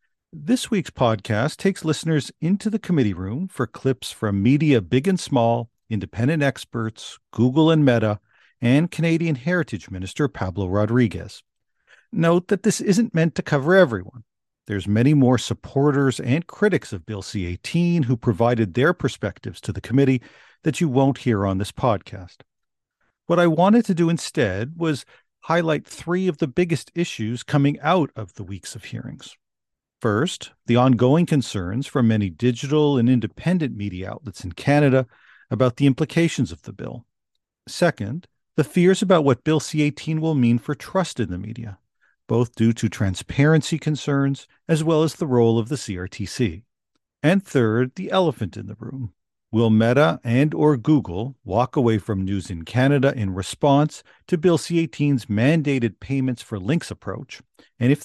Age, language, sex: 50-69, English, male